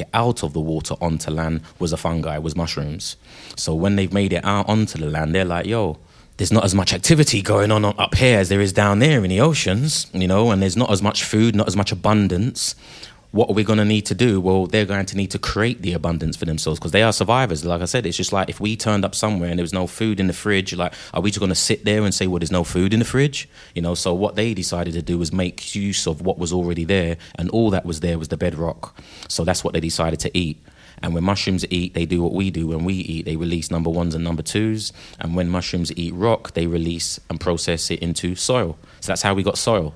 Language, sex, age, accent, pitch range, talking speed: English, male, 20-39, British, 85-100 Hz, 270 wpm